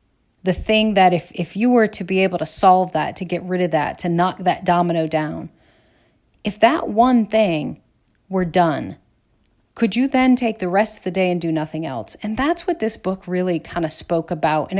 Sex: female